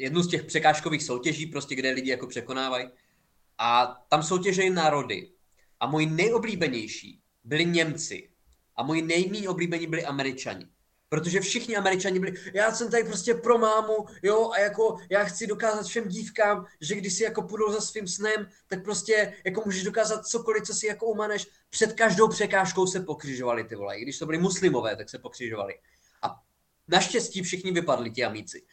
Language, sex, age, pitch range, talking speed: Czech, male, 20-39, 160-215 Hz, 170 wpm